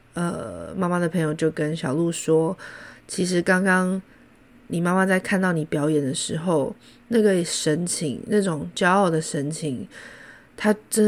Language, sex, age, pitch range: Chinese, female, 20-39, 165-215 Hz